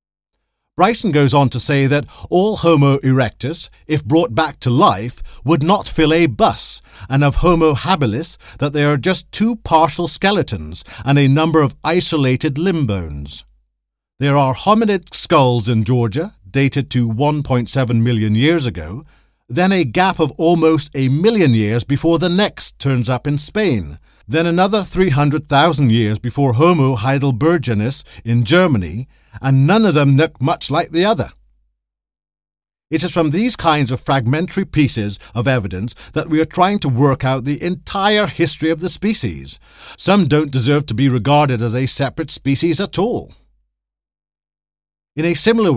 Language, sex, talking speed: English, male, 155 wpm